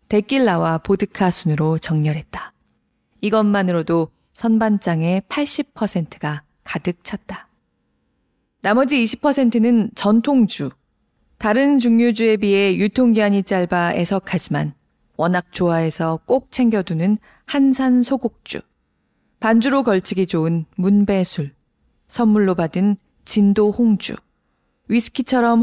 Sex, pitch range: female, 170-235 Hz